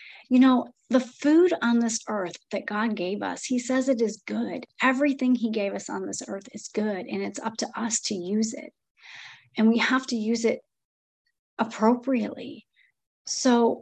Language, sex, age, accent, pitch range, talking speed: English, female, 30-49, American, 215-265 Hz, 180 wpm